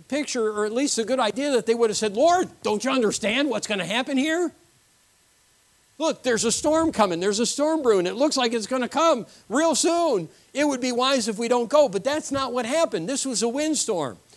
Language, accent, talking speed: English, American, 235 wpm